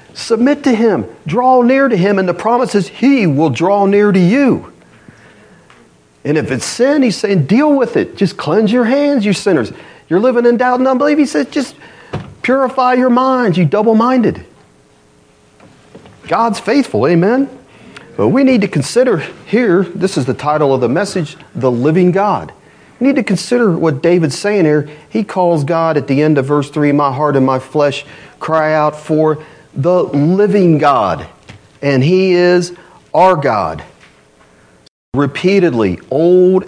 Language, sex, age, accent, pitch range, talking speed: English, male, 40-59, American, 140-215 Hz, 165 wpm